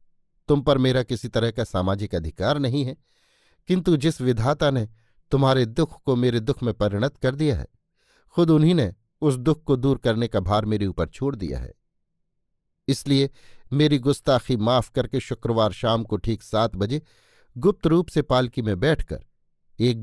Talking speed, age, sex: 170 wpm, 50-69, male